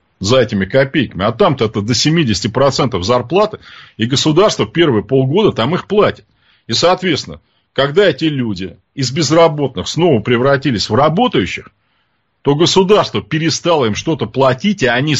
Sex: male